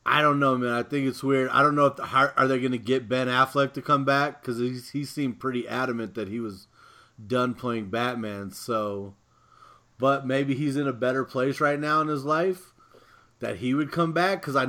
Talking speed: 230 wpm